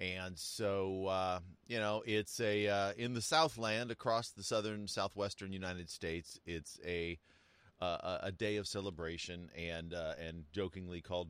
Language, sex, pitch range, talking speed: English, male, 80-95 Hz, 155 wpm